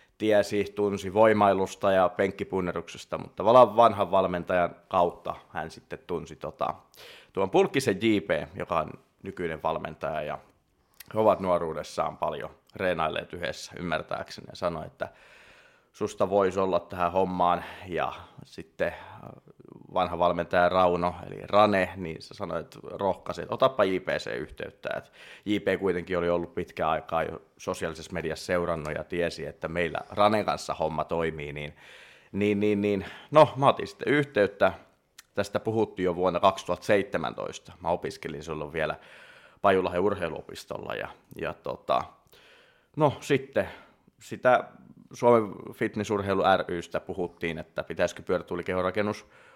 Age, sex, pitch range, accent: 30-49, male, 90-105 Hz, native